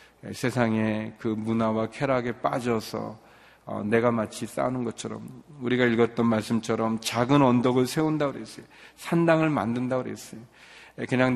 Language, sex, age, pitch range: Korean, male, 40-59, 110-130 Hz